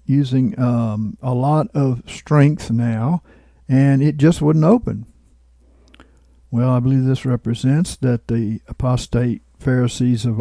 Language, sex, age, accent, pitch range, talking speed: English, male, 60-79, American, 115-145 Hz, 125 wpm